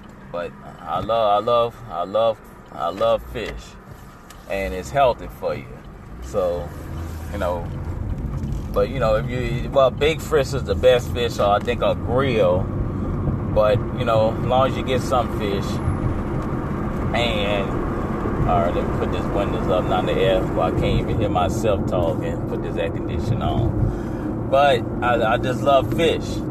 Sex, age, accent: male, 30-49, American